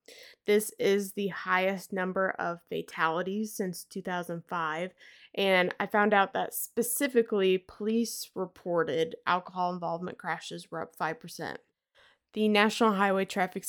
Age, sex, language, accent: 20-39, female, English, American